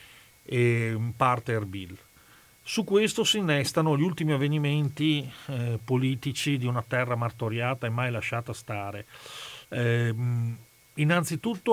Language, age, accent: Italian, 40-59, native